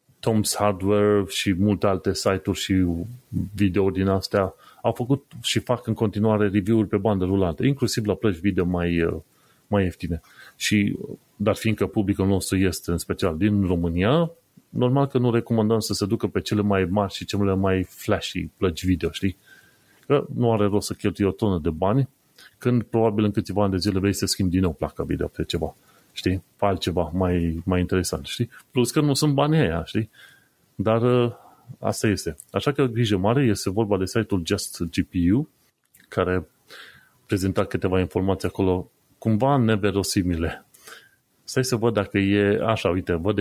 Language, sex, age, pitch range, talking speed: Romanian, male, 30-49, 95-115 Hz, 170 wpm